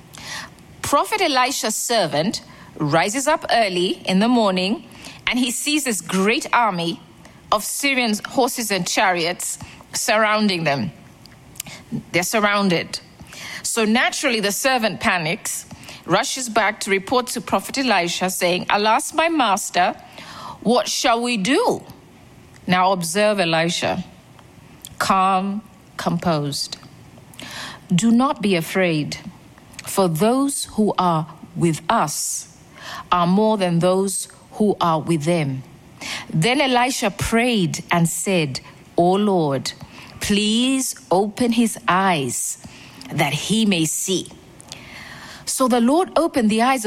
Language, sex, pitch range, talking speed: English, female, 175-240 Hz, 115 wpm